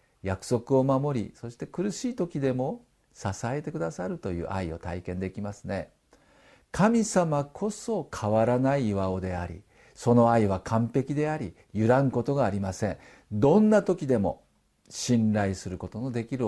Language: Japanese